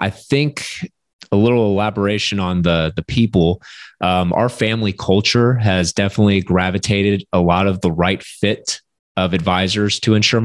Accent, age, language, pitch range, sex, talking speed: American, 30-49, English, 90-105 Hz, male, 150 wpm